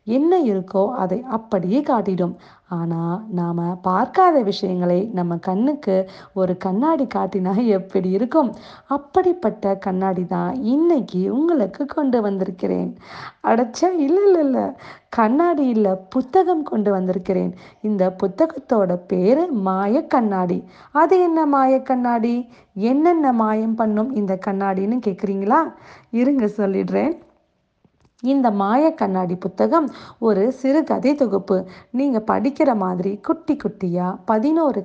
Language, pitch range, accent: Tamil, 185-260 Hz, native